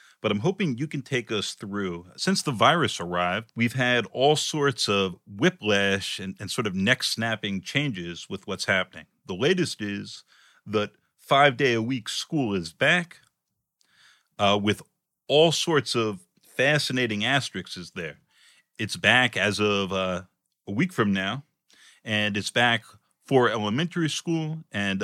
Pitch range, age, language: 105-140 Hz, 40-59, English